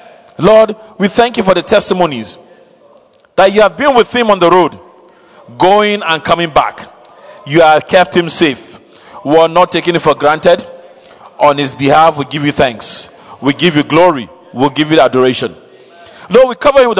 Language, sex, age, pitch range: English, male, 40-59, 135-185 Hz